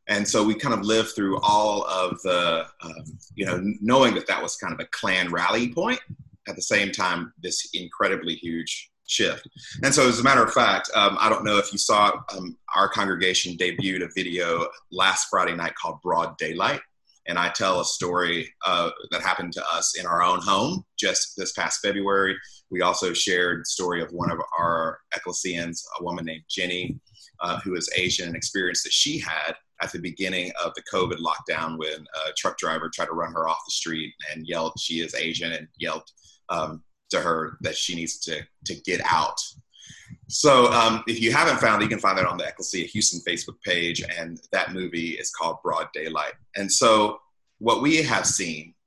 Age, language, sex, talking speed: 30-49, English, male, 200 wpm